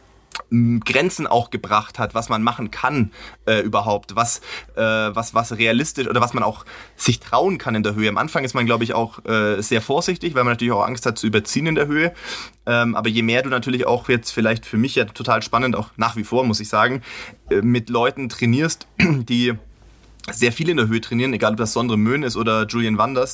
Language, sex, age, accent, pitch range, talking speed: German, male, 30-49, German, 110-120 Hz, 225 wpm